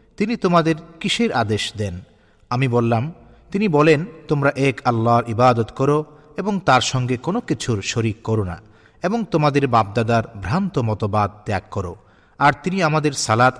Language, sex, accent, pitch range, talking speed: Bengali, male, native, 110-150 Hz, 145 wpm